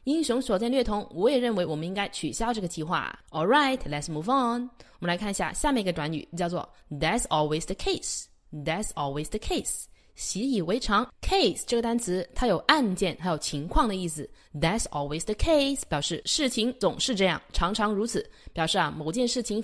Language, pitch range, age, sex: Chinese, 180-245 Hz, 20-39, female